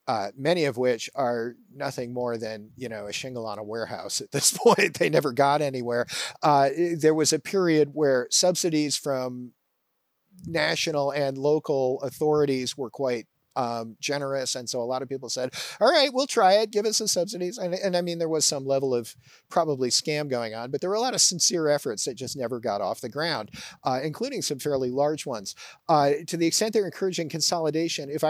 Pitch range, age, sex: 125-165 Hz, 40-59, male